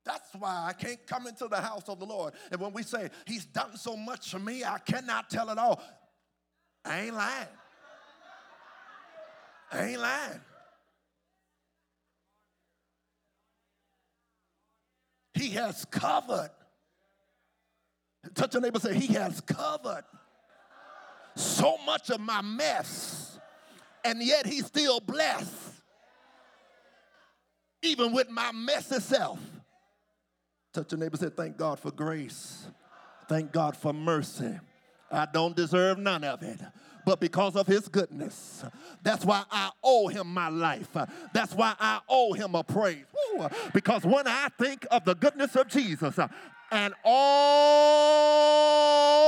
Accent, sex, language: American, male, English